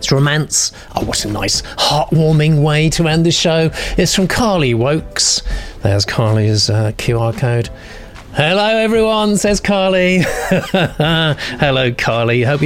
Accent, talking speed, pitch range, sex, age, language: British, 130 wpm, 115-160 Hz, male, 40-59, English